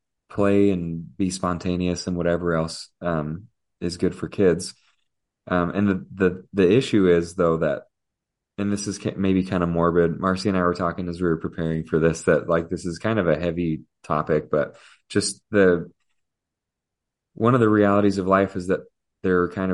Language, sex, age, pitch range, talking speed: English, male, 30-49, 85-95 Hz, 190 wpm